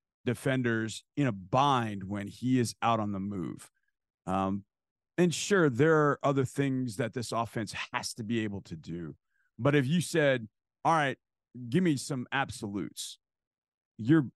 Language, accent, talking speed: English, American, 160 wpm